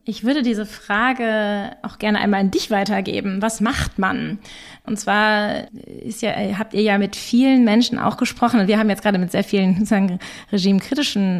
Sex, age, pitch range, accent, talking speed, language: female, 20-39, 185-215 Hz, German, 180 wpm, German